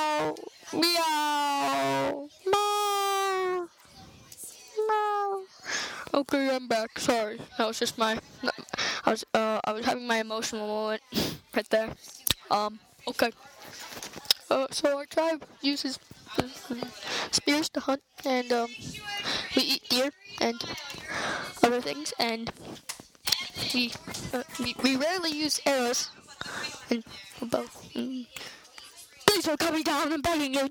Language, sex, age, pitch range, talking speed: English, female, 10-29, 235-350 Hz, 110 wpm